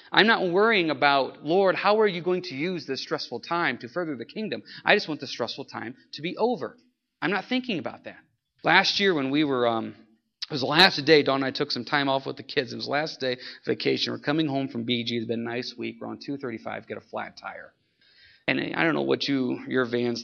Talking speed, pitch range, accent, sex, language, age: 255 wpm, 120-155 Hz, American, male, English, 30-49